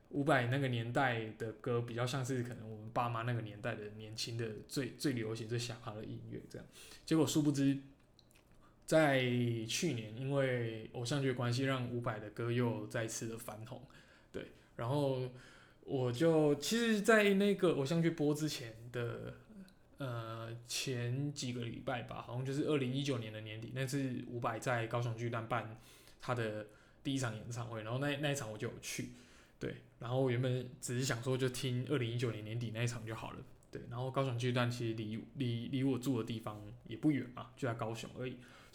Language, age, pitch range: Chinese, 20-39, 115-140 Hz